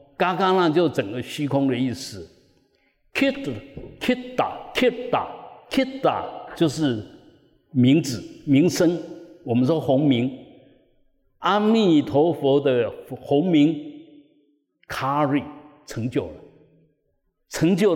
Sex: male